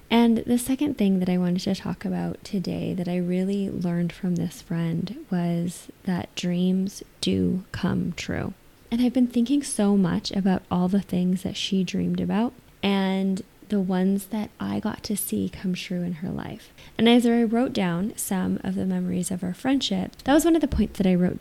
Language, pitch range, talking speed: English, 180-210 Hz, 200 wpm